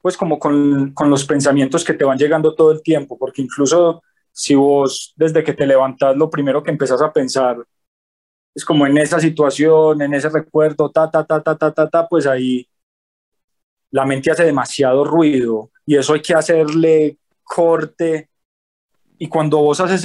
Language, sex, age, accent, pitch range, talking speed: Spanish, male, 20-39, Colombian, 135-160 Hz, 175 wpm